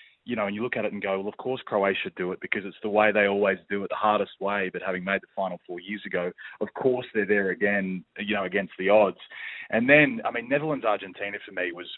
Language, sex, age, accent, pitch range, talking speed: English, male, 20-39, Australian, 95-125 Hz, 260 wpm